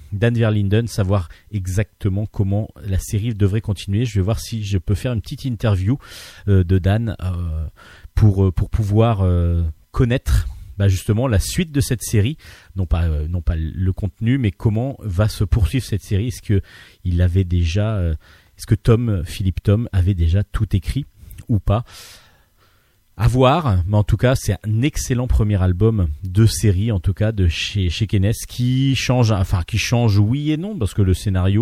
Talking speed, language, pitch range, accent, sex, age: 175 wpm, French, 90-110 Hz, French, male, 30-49